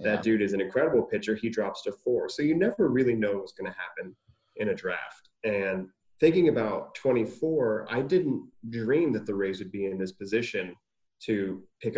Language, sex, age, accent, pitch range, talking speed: English, male, 30-49, American, 100-135 Hz, 195 wpm